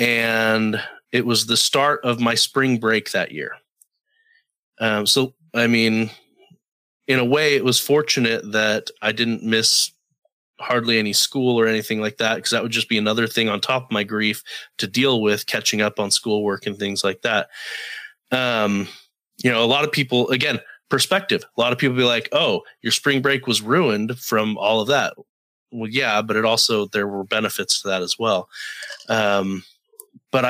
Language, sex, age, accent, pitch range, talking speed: English, male, 30-49, American, 110-130 Hz, 185 wpm